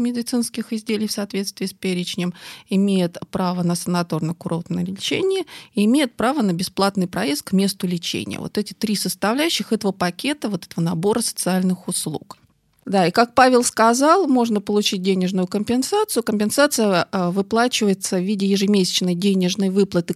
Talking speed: 140 wpm